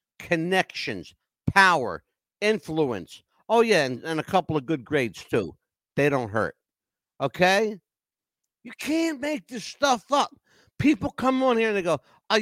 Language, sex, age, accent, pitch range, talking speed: English, male, 60-79, American, 130-195 Hz, 150 wpm